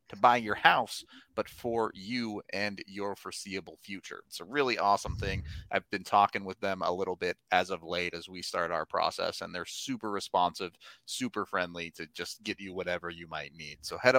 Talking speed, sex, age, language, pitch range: 205 wpm, male, 30-49, English, 95-125 Hz